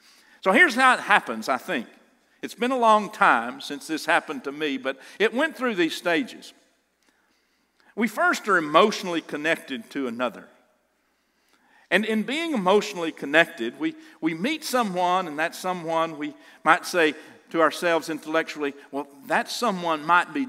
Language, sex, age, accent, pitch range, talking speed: English, male, 50-69, American, 165-245 Hz, 155 wpm